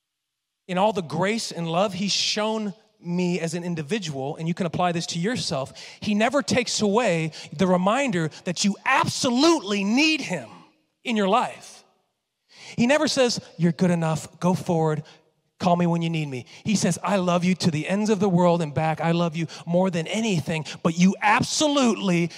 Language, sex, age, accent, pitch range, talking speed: English, male, 30-49, American, 170-220 Hz, 185 wpm